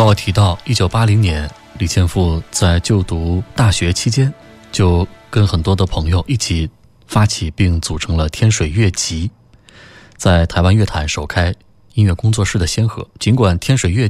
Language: Chinese